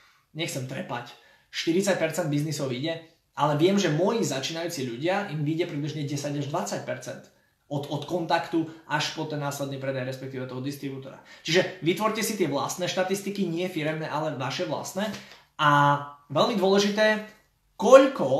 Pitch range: 140-185 Hz